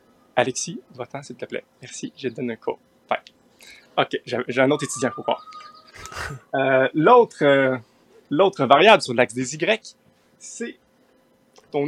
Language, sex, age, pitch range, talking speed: French, male, 30-49, 135-190 Hz, 150 wpm